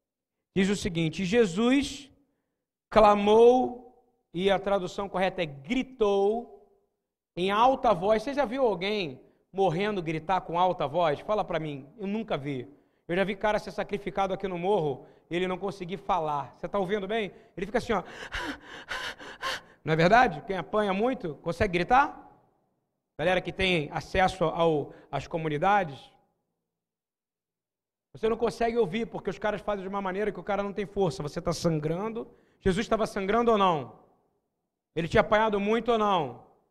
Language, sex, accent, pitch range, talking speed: Portuguese, male, Brazilian, 160-215 Hz, 155 wpm